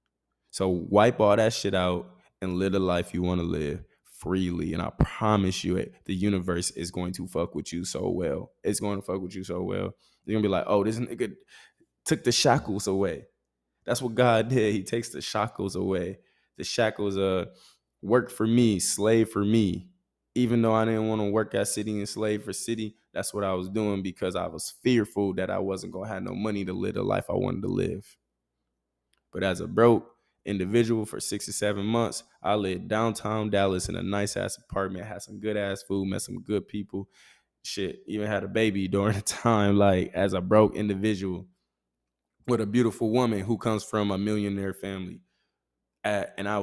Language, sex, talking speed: English, male, 205 wpm